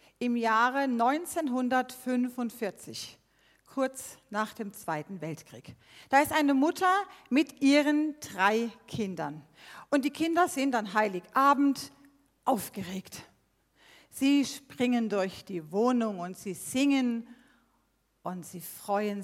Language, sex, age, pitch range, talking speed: German, female, 40-59, 185-270 Hz, 105 wpm